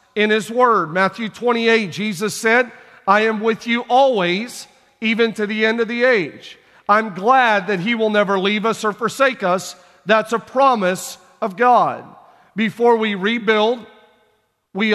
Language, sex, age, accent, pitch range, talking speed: English, male, 40-59, American, 200-235 Hz, 155 wpm